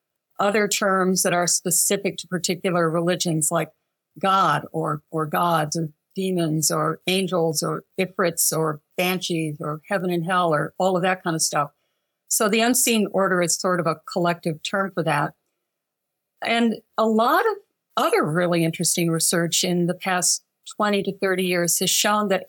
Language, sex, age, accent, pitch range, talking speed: English, female, 50-69, American, 165-205 Hz, 165 wpm